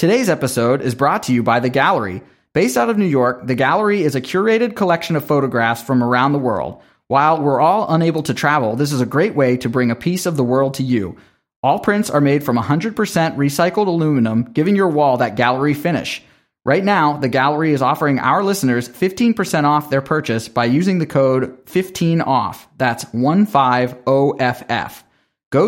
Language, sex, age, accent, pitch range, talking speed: English, male, 30-49, American, 125-165 Hz, 185 wpm